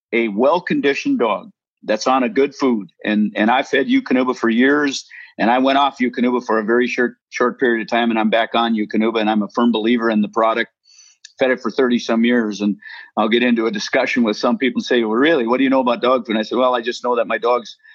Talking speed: 255 wpm